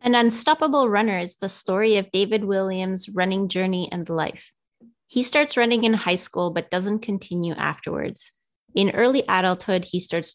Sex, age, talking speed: female, 30-49, 160 wpm